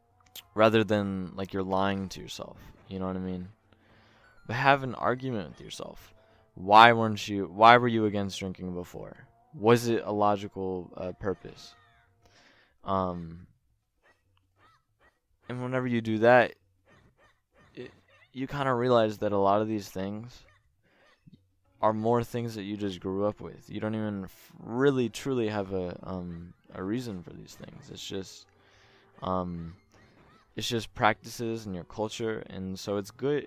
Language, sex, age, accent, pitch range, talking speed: English, male, 20-39, American, 95-115 Hz, 150 wpm